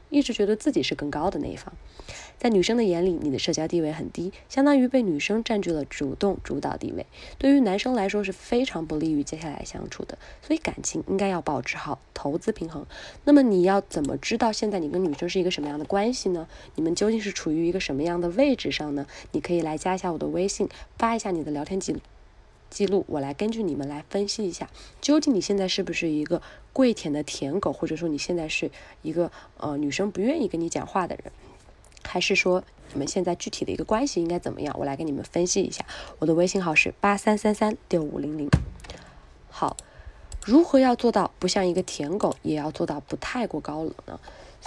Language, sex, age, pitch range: Chinese, female, 20-39, 160-220 Hz